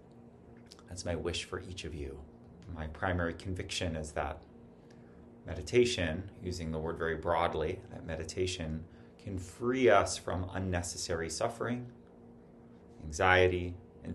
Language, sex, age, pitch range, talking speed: English, male, 30-49, 80-95 Hz, 120 wpm